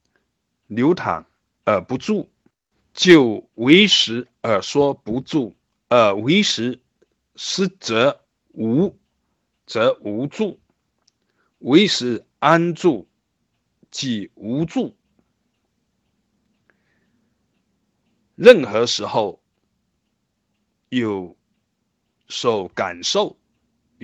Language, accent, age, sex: Chinese, native, 60-79, male